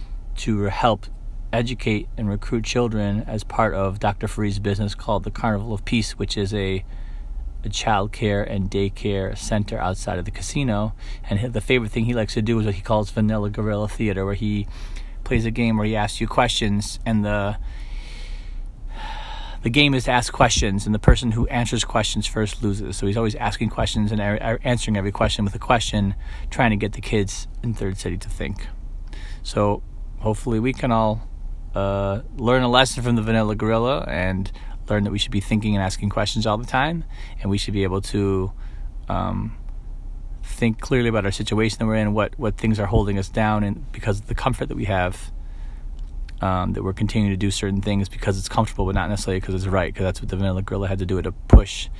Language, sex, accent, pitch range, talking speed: English, male, American, 95-110 Hz, 205 wpm